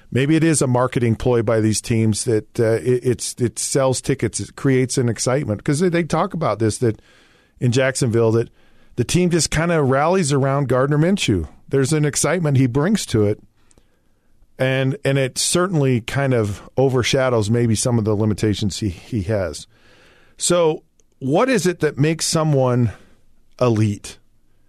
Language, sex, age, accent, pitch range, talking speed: English, male, 40-59, American, 115-145 Hz, 170 wpm